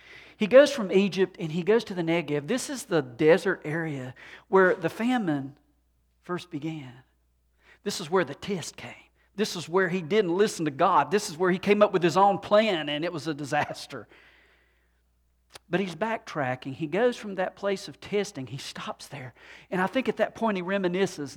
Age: 50-69